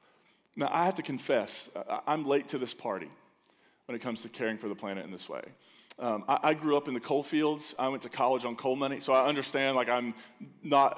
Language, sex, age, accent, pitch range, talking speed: English, male, 20-39, American, 115-145 Hz, 235 wpm